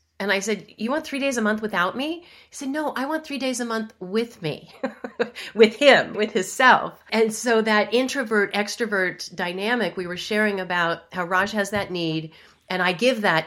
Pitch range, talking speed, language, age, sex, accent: 170-220 Hz, 205 wpm, English, 40-59, female, American